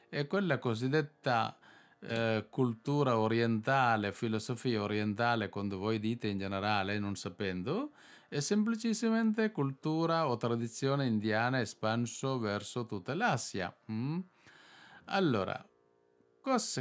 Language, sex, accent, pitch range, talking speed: Italian, male, native, 110-145 Hz, 100 wpm